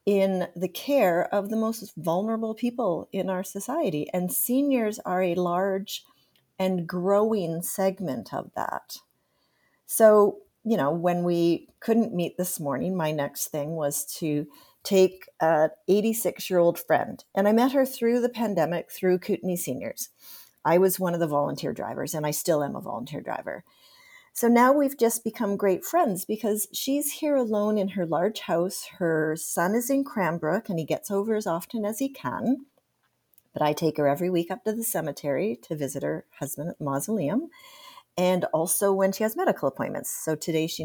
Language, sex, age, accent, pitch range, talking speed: English, female, 40-59, American, 165-225 Hz, 180 wpm